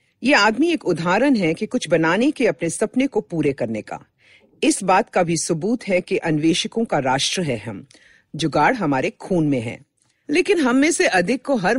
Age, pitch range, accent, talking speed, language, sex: 50-69, 160-265 Hz, native, 200 wpm, Hindi, female